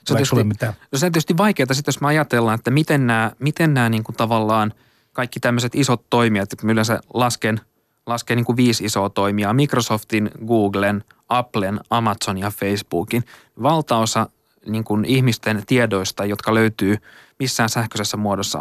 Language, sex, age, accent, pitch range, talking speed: Finnish, male, 20-39, native, 105-130 Hz, 145 wpm